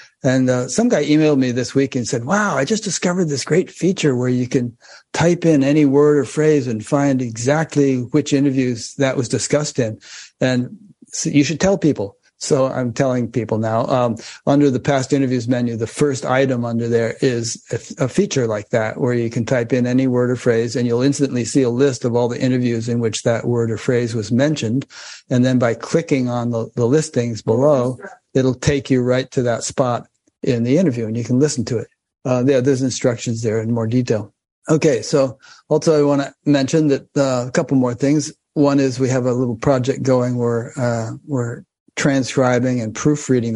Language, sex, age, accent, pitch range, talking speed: English, male, 60-79, American, 120-140 Hz, 205 wpm